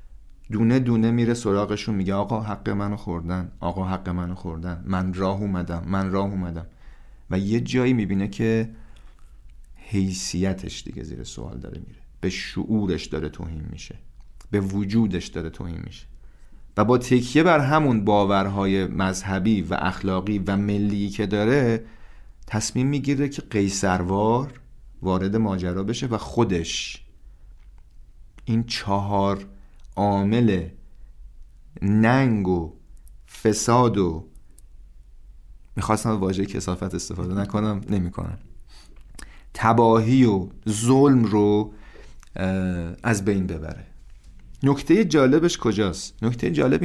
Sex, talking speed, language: male, 110 wpm, Persian